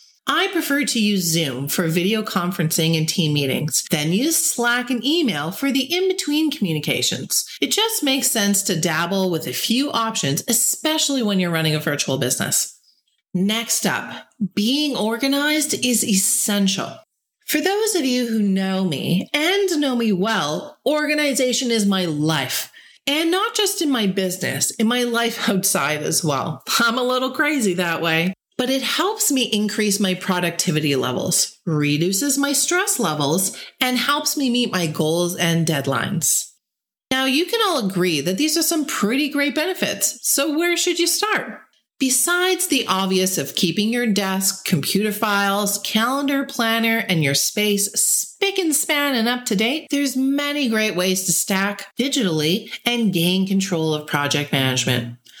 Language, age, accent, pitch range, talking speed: English, 30-49, American, 180-280 Hz, 160 wpm